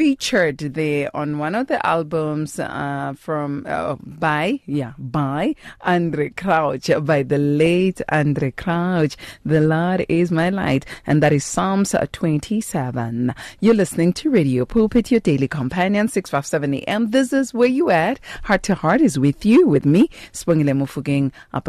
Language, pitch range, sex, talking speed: English, 140-190 Hz, female, 150 wpm